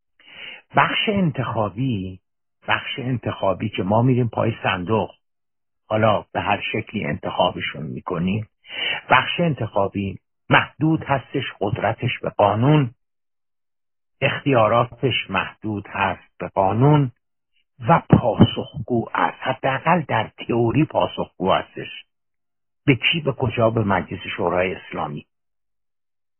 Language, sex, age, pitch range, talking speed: Persian, male, 60-79, 100-140 Hz, 100 wpm